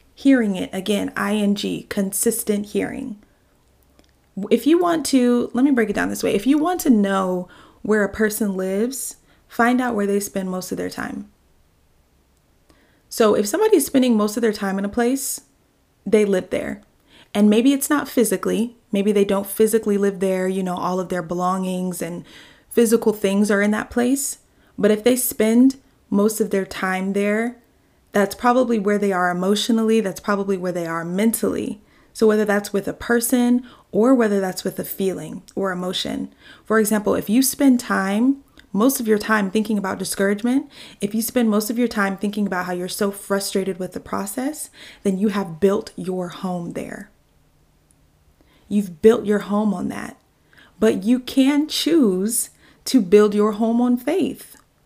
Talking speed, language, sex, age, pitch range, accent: 175 wpm, English, female, 20-39, 195-240 Hz, American